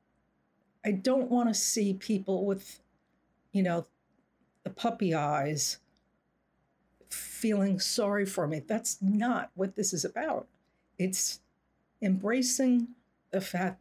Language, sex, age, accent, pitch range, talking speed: English, female, 60-79, American, 155-195 Hz, 115 wpm